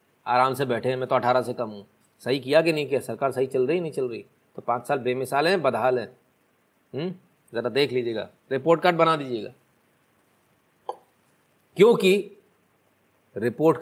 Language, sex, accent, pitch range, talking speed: Hindi, male, native, 135-185 Hz, 170 wpm